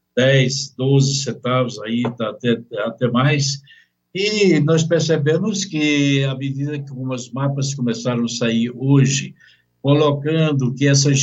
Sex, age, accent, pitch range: male, 60-79, Brazilian, 130-155 Hz